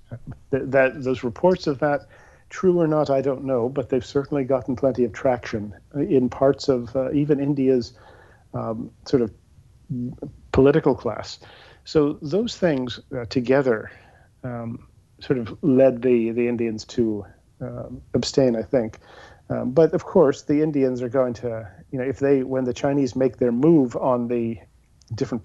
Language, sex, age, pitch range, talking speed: English, male, 40-59, 115-140 Hz, 165 wpm